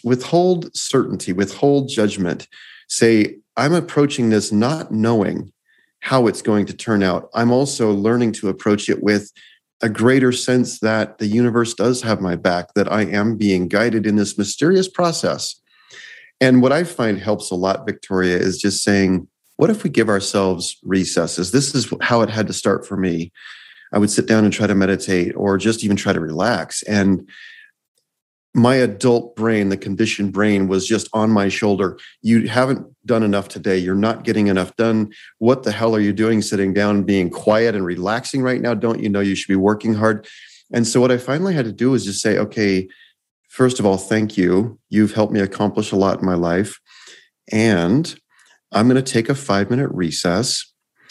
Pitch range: 100-120 Hz